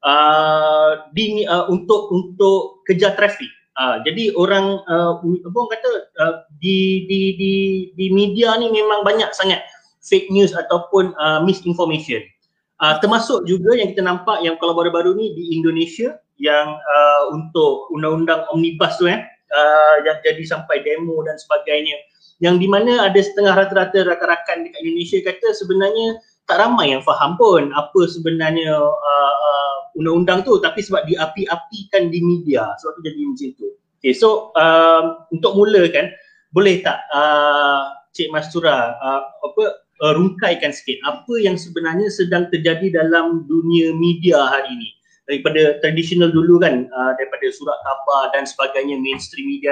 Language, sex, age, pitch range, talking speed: Malay, male, 30-49, 155-205 Hz, 150 wpm